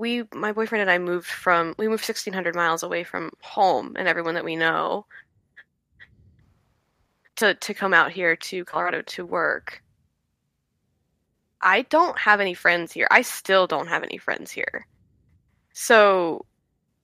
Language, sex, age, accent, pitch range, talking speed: English, female, 10-29, American, 170-210 Hz, 150 wpm